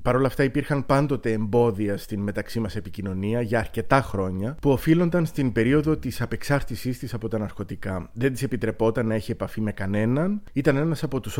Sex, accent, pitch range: male, native, 110-155 Hz